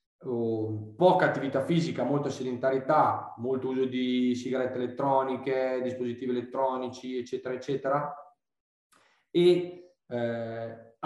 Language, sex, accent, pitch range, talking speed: Italian, male, native, 120-150 Hz, 85 wpm